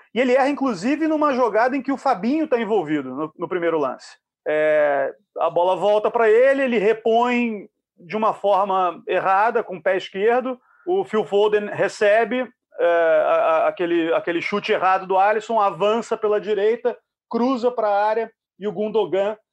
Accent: Brazilian